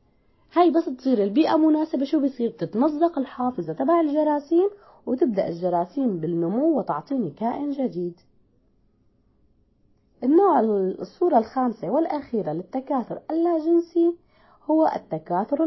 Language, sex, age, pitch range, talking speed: Arabic, female, 20-39, 200-280 Hz, 95 wpm